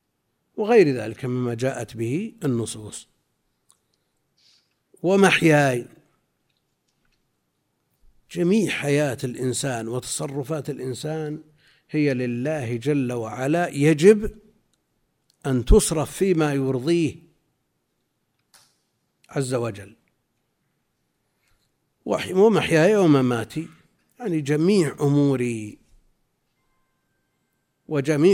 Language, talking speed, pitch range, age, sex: Arabic, 60 wpm, 125-165 Hz, 50-69, male